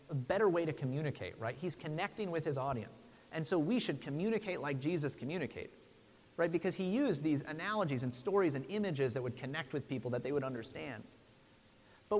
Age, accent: 30-49, American